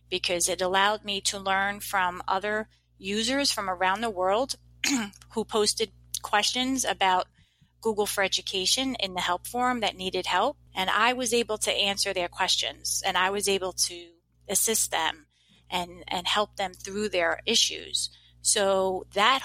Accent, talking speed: American, 155 wpm